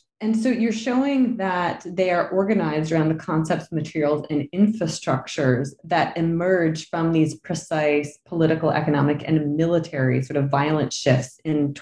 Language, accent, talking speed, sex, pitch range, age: English, American, 140 wpm, female, 145-185 Hz, 20-39